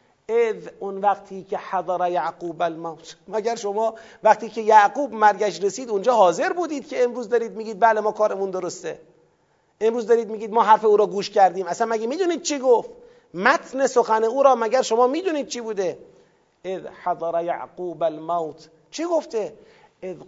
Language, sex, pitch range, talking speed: Persian, male, 200-250 Hz, 160 wpm